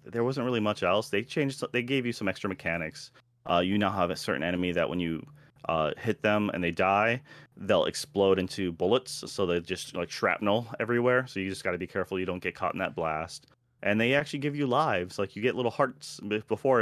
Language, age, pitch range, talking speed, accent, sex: English, 30-49, 90-120 Hz, 240 wpm, American, male